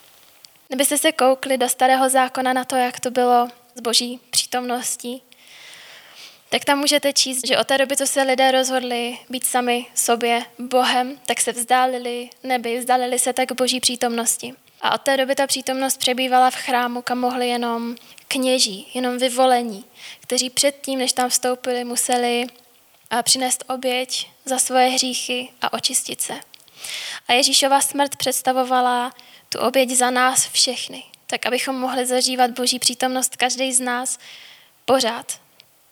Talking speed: 145 wpm